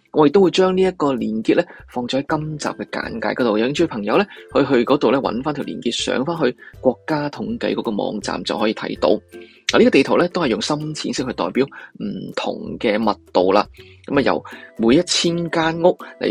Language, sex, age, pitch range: Chinese, male, 20-39, 110-160 Hz